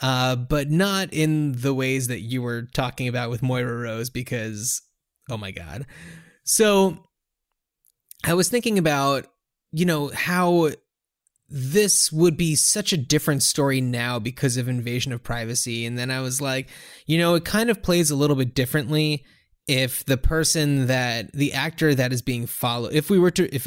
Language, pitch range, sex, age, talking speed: English, 125-155 Hz, male, 20-39, 175 wpm